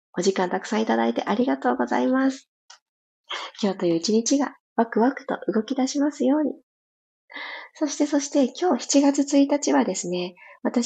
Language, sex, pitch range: Japanese, female, 175-265 Hz